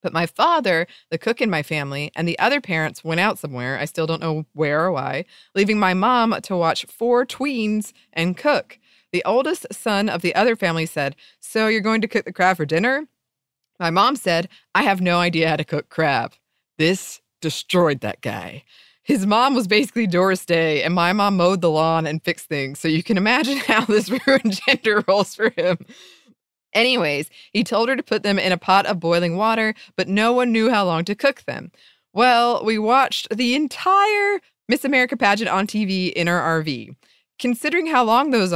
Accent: American